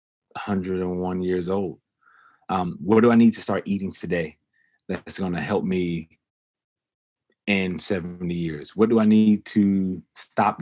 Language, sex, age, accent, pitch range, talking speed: English, male, 30-49, American, 90-110 Hz, 145 wpm